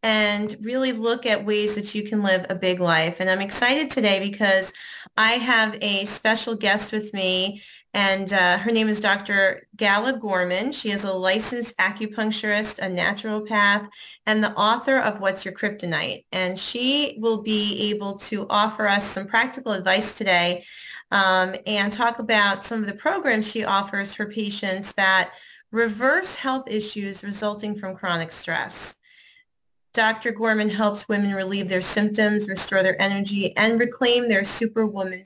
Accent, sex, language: American, female, English